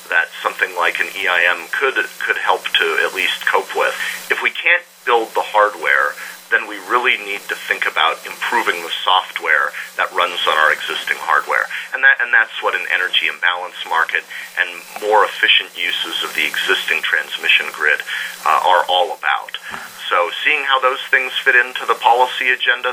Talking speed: 175 wpm